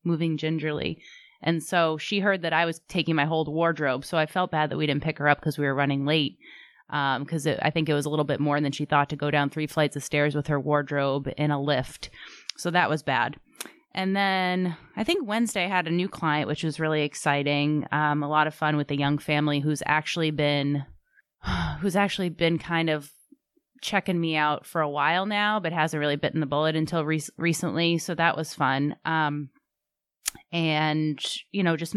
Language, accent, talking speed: English, American, 215 wpm